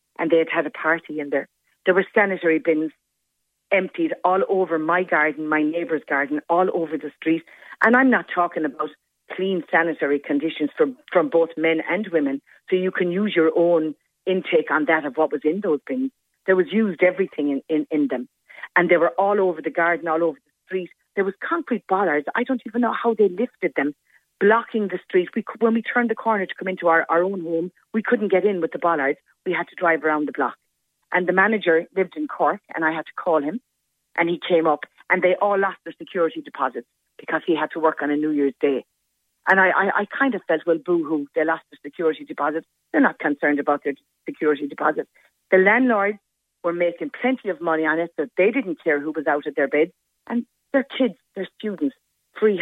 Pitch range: 155-190 Hz